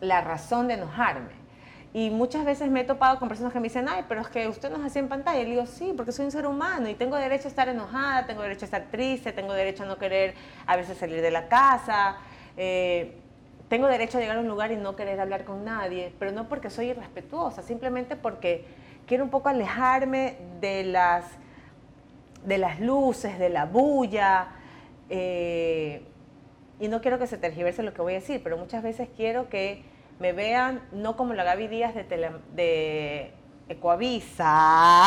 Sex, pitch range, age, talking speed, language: female, 190-255 Hz, 30-49, 200 wpm, Spanish